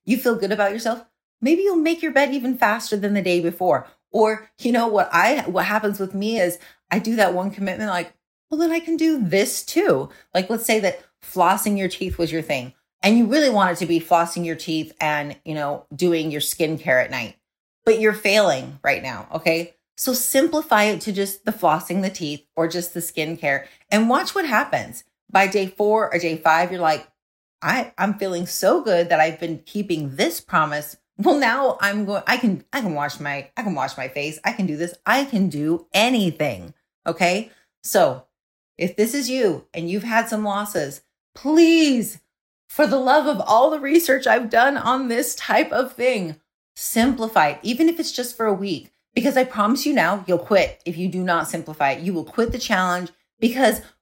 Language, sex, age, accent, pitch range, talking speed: English, female, 30-49, American, 170-240 Hz, 205 wpm